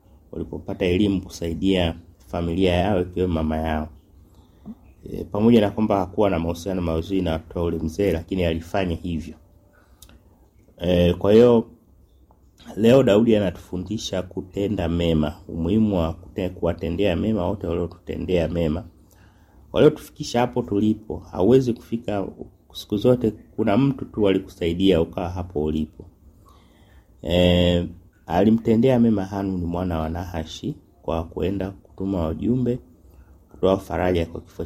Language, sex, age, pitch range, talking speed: Swahili, male, 30-49, 80-100 Hz, 115 wpm